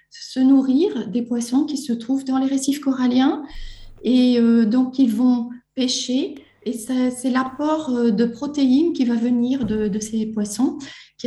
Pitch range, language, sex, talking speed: 230-265 Hz, French, female, 165 wpm